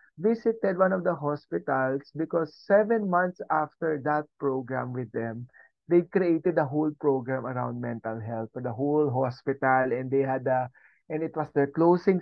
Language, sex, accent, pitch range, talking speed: Filipino, male, native, 130-175 Hz, 165 wpm